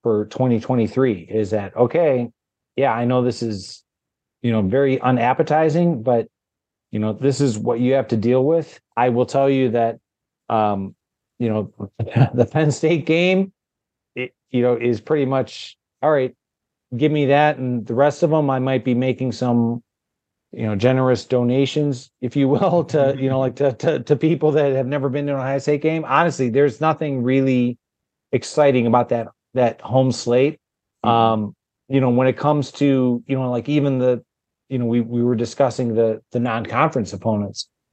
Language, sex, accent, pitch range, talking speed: English, male, American, 115-140 Hz, 180 wpm